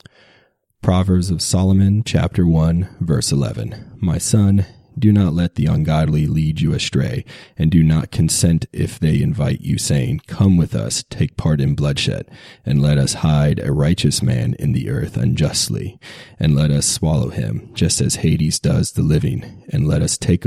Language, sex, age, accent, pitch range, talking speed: English, male, 30-49, American, 80-100 Hz, 175 wpm